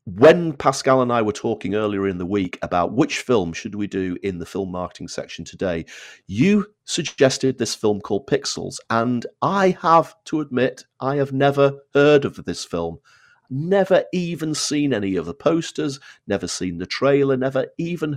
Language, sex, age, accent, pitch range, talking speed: English, male, 40-59, British, 105-145 Hz, 175 wpm